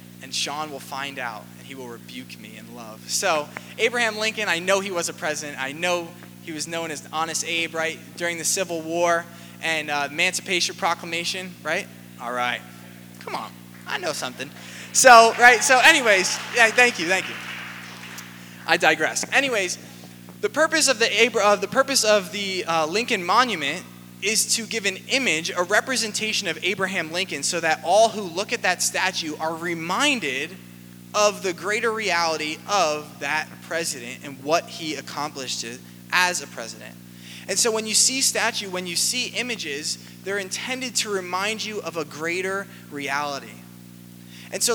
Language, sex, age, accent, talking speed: English, male, 20-39, American, 170 wpm